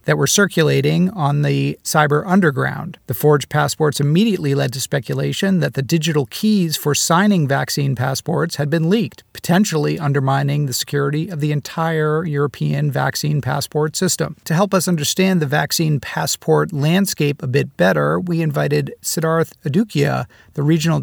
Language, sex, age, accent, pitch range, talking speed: English, male, 40-59, American, 140-170 Hz, 150 wpm